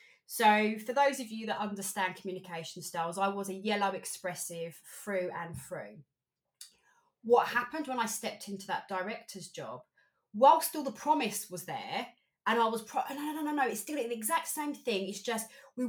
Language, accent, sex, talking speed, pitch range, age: English, British, female, 185 wpm, 195-265 Hz, 30-49